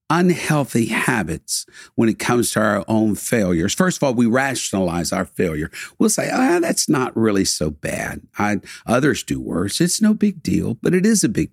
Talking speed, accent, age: 185 wpm, American, 60-79